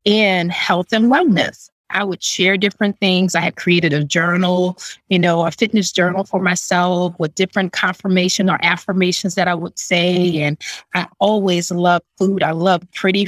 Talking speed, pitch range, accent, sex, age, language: 170 wpm, 175-210 Hz, American, female, 30-49, English